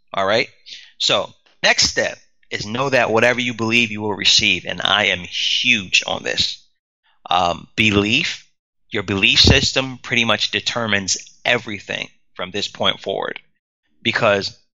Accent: American